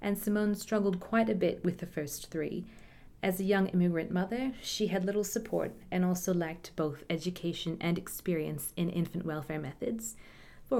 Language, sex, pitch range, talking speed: English, female, 160-195 Hz, 170 wpm